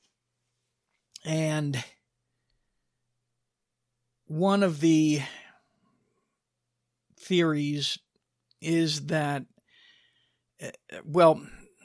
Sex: male